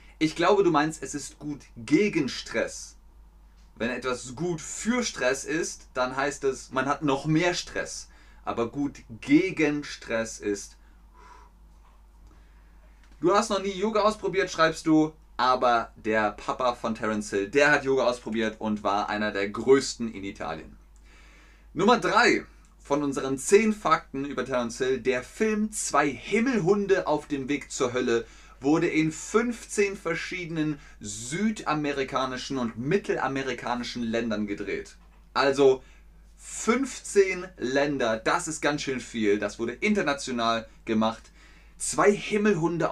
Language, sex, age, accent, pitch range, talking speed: German, male, 30-49, German, 110-170 Hz, 130 wpm